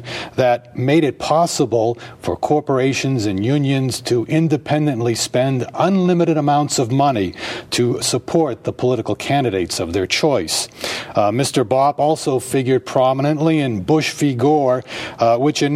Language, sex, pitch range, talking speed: English, male, 120-150 Hz, 135 wpm